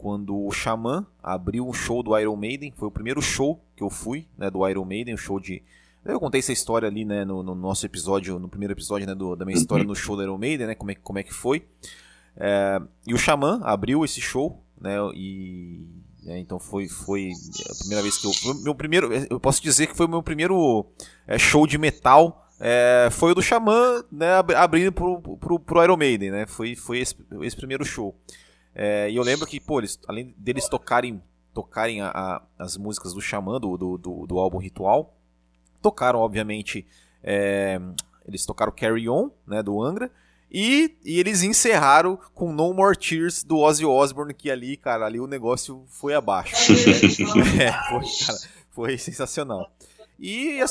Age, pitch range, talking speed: 20-39, 100-155 Hz, 190 wpm